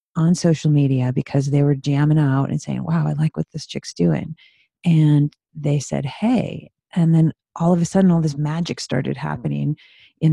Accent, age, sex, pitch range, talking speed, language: American, 40-59, female, 145-170 Hz, 190 wpm, English